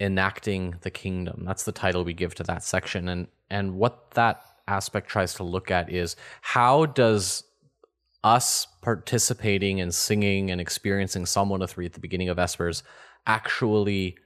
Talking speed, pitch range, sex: 155 wpm, 90-105 Hz, male